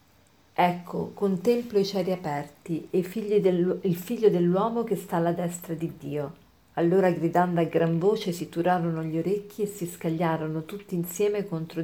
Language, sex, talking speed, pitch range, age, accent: Italian, female, 150 wpm, 165-200 Hz, 50-69, native